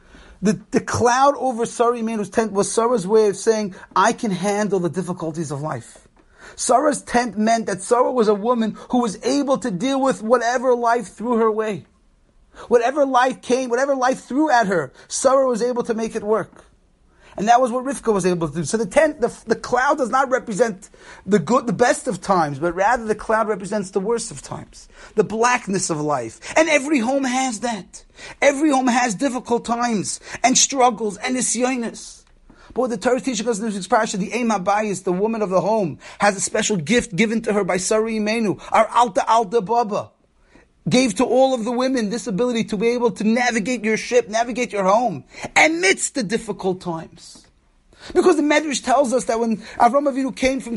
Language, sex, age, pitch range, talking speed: English, male, 30-49, 215-260 Hz, 200 wpm